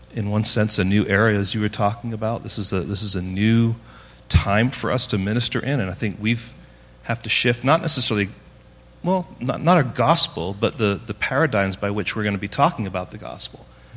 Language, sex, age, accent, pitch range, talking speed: English, male, 40-59, American, 100-120 Hz, 225 wpm